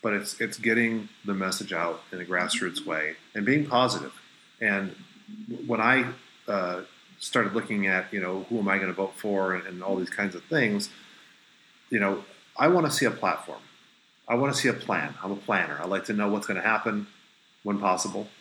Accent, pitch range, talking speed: American, 100-120 Hz, 205 wpm